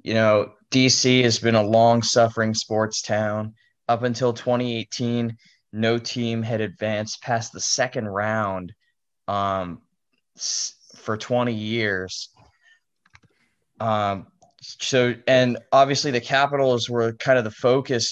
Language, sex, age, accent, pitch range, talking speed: English, male, 10-29, American, 105-120 Hz, 115 wpm